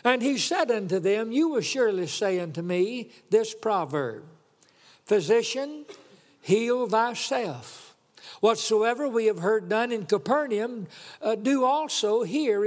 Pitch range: 200-250 Hz